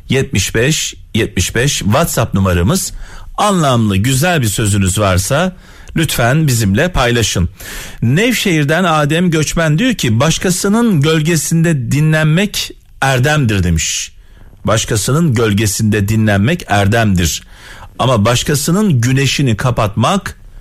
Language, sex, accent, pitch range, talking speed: Turkish, male, native, 100-160 Hz, 85 wpm